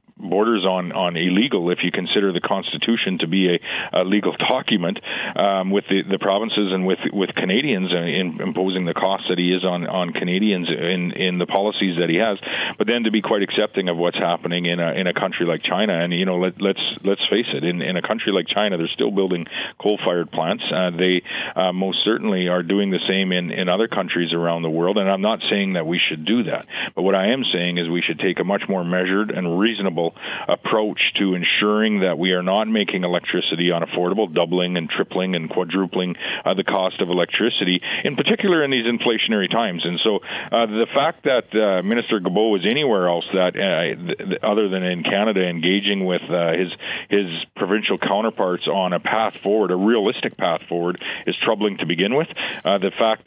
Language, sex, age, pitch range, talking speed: English, male, 40-59, 85-100 Hz, 205 wpm